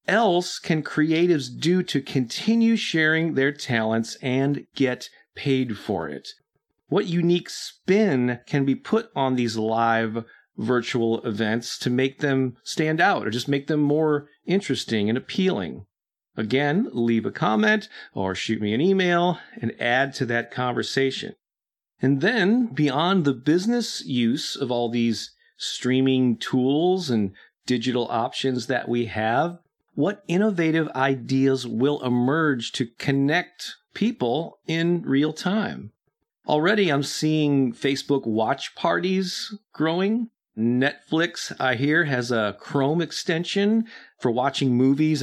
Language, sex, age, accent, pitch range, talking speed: English, male, 40-59, American, 120-170 Hz, 130 wpm